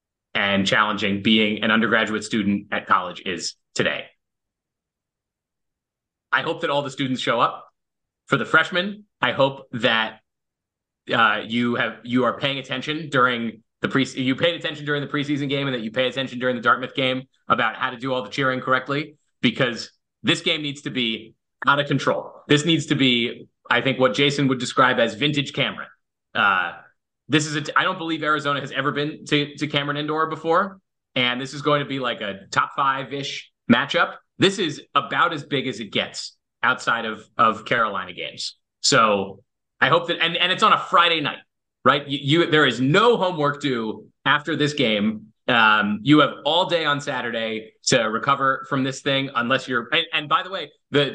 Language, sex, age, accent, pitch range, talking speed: English, male, 30-49, American, 120-150 Hz, 190 wpm